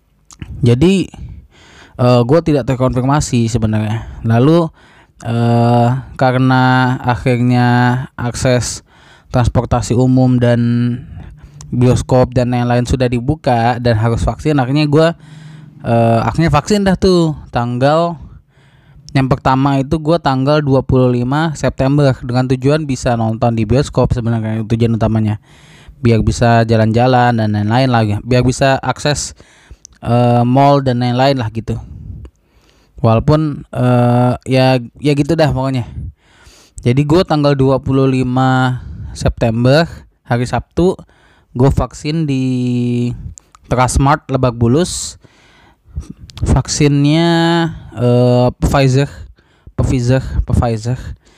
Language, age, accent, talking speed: Indonesian, 20-39, native, 100 wpm